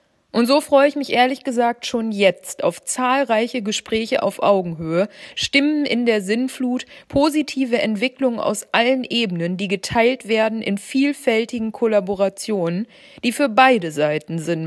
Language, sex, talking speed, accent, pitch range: German, female, 140 wpm, German, 195-255 Hz